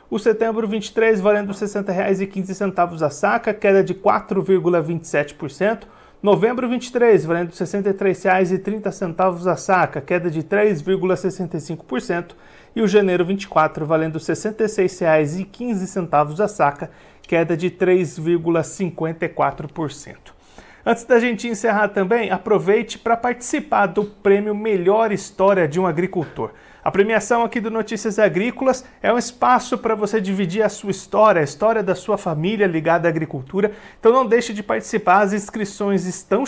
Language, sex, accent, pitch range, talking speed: Portuguese, male, Brazilian, 175-220 Hz, 130 wpm